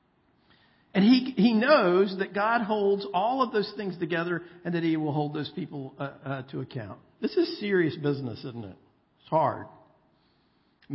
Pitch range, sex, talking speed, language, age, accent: 130-165 Hz, male, 175 wpm, English, 50-69, American